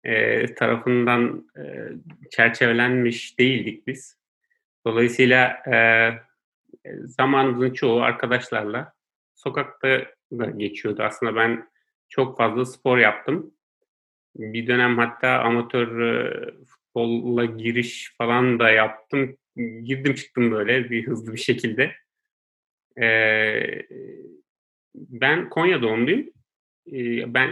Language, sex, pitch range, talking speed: Turkish, male, 115-140 Hz, 80 wpm